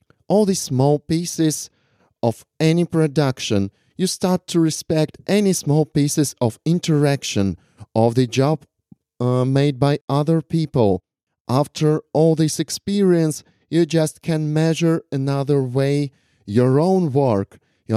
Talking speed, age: 125 wpm, 30-49